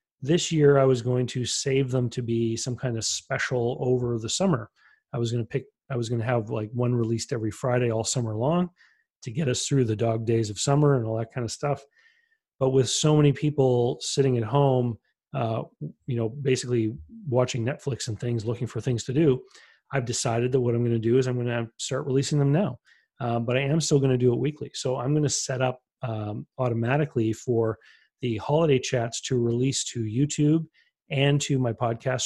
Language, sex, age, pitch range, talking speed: English, male, 30-49, 120-140 Hz, 220 wpm